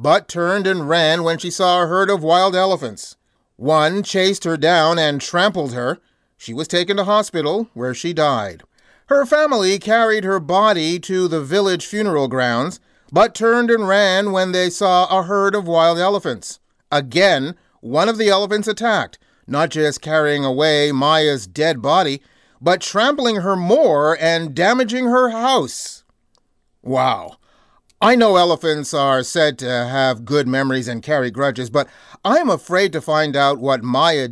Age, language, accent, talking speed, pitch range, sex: 40-59, English, American, 160 wpm, 145-205 Hz, male